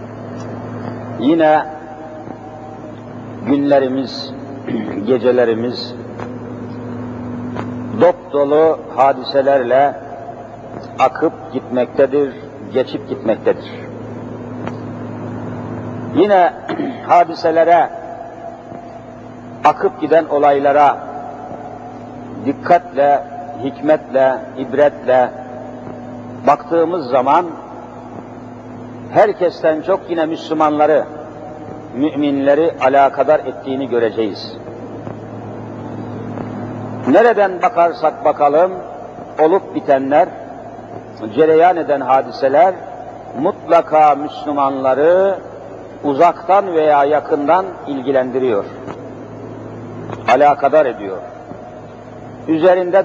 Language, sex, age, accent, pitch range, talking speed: Turkish, male, 50-69, native, 120-155 Hz, 50 wpm